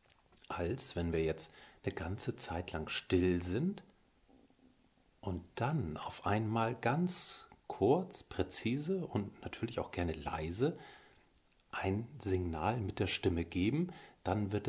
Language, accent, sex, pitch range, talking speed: German, German, male, 95-125 Hz, 125 wpm